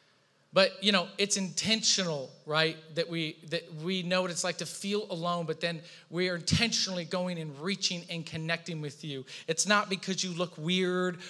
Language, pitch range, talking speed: English, 150-185 Hz, 185 wpm